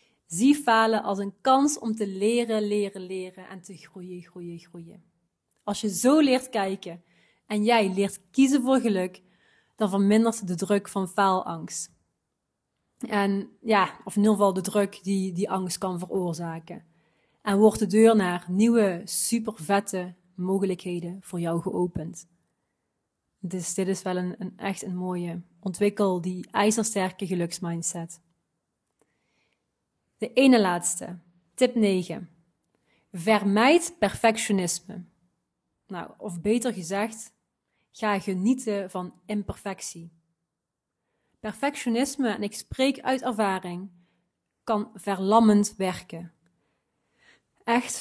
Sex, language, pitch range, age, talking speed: female, Dutch, 180-220 Hz, 30-49, 115 wpm